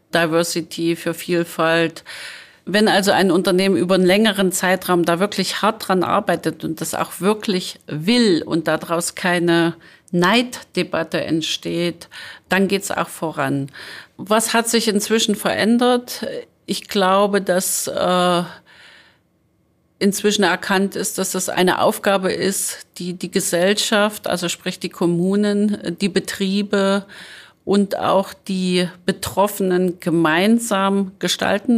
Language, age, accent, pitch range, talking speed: German, 40-59, German, 175-205 Hz, 115 wpm